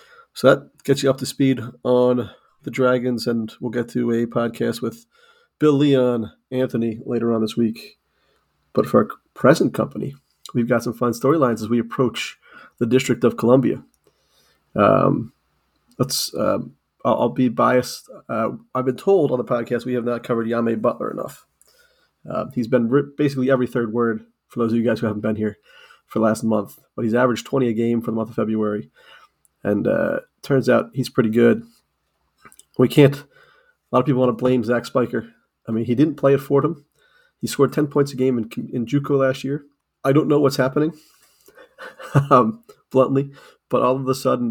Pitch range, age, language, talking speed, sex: 115-140 Hz, 30-49, English, 190 wpm, male